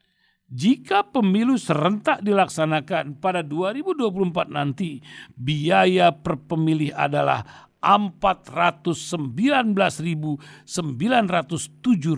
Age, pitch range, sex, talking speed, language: 50-69, 160-220 Hz, male, 65 wpm, Indonesian